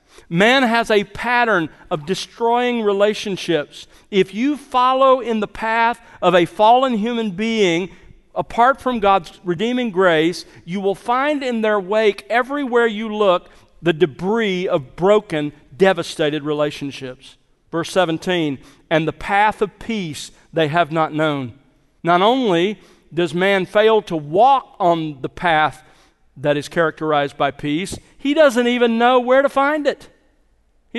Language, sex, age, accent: English, male, 50-69, American